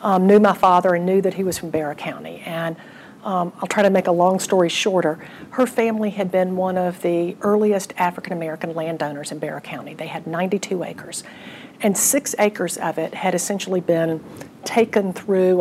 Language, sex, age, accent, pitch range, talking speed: English, female, 50-69, American, 180-220 Hz, 190 wpm